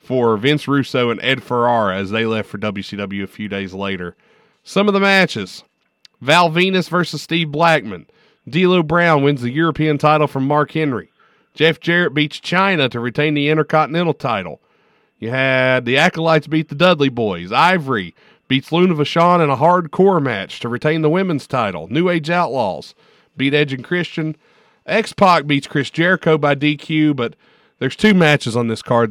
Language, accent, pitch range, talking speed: English, American, 130-170 Hz, 170 wpm